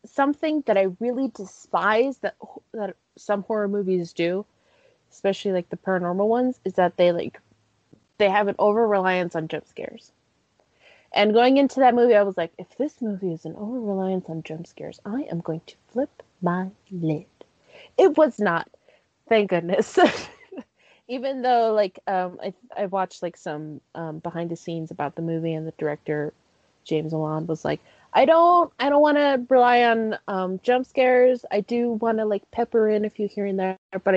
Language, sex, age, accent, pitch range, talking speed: English, female, 20-39, American, 170-235 Hz, 175 wpm